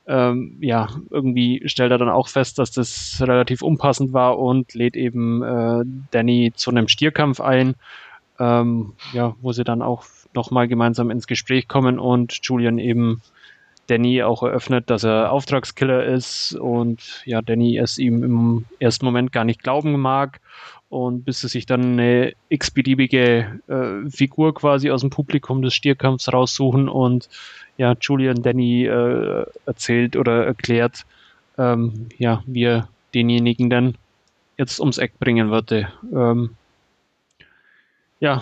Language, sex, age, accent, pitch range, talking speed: German, male, 20-39, German, 120-135 Hz, 140 wpm